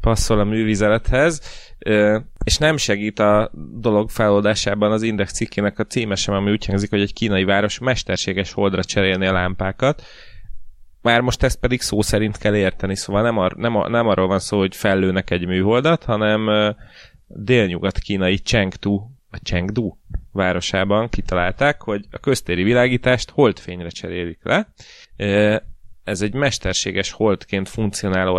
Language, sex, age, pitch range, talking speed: Hungarian, male, 30-49, 90-110 Hz, 140 wpm